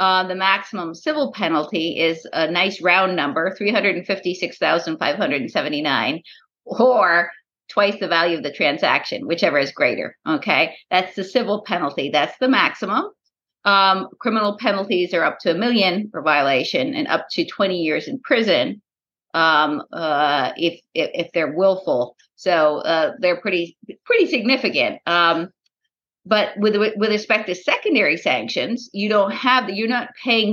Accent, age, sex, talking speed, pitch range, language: American, 50-69, female, 165 wpm, 170-220 Hz, English